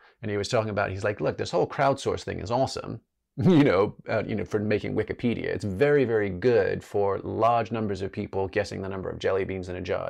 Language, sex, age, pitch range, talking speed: English, male, 30-49, 100-135 Hz, 240 wpm